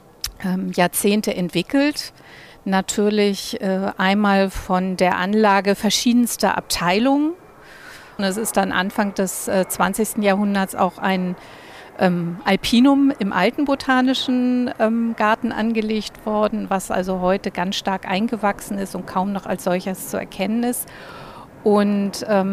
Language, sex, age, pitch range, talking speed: German, female, 50-69, 190-220 Hz, 110 wpm